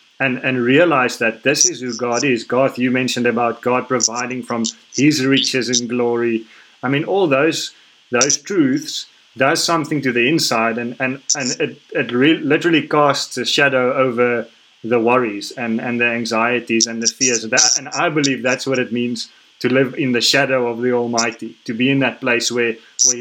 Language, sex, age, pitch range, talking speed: English, male, 30-49, 115-130 Hz, 190 wpm